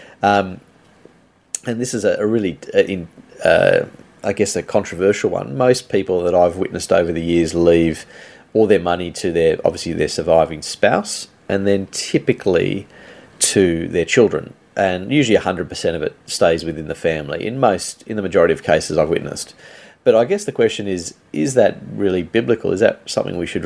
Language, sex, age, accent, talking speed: English, male, 30-49, Australian, 185 wpm